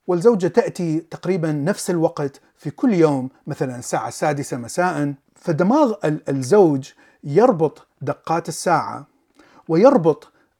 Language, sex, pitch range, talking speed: Arabic, male, 140-175 Hz, 100 wpm